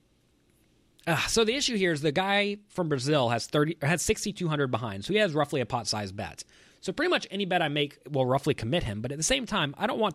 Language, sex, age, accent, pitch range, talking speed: English, male, 20-39, American, 115-165 Hz, 240 wpm